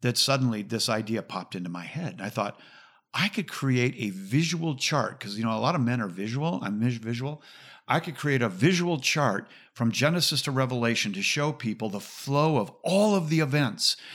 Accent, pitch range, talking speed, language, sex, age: American, 110-135 Hz, 205 wpm, English, male, 50-69